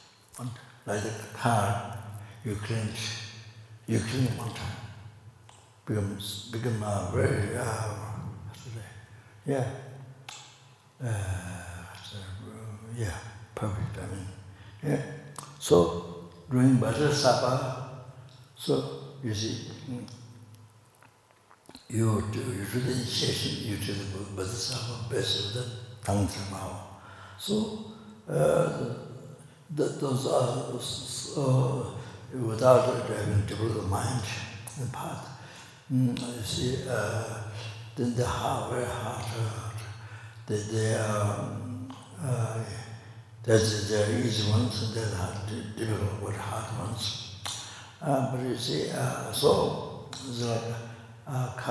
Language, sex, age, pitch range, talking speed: English, male, 60-79, 105-125 Hz, 100 wpm